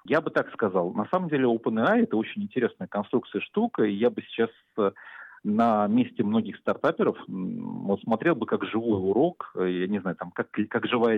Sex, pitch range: male, 100-165 Hz